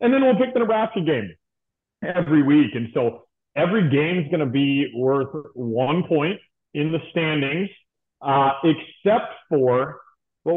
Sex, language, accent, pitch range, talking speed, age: male, English, American, 125-160 Hz, 155 wpm, 30-49